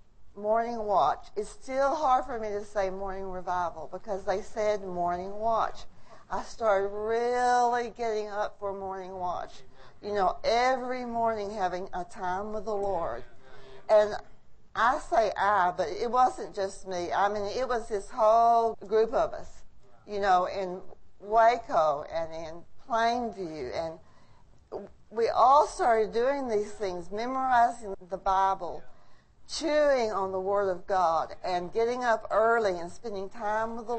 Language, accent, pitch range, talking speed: English, American, 195-235 Hz, 150 wpm